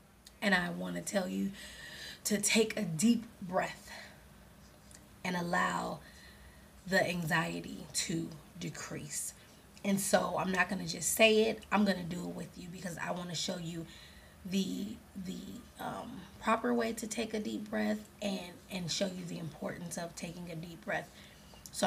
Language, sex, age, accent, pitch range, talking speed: English, female, 20-39, American, 175-215 Hz, 165 wpm